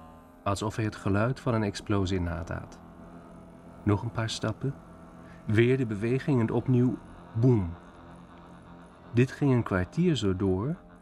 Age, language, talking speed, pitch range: 40-59, Dutch, 135 wpm, 95-125 Hz